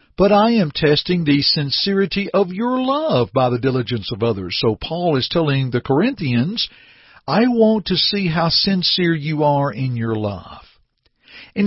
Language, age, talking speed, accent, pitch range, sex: English, 60-79, 165 wpm, American, 125-195 Hz, male